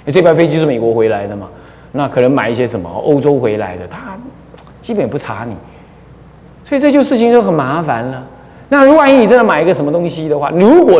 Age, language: 30-49, Chinese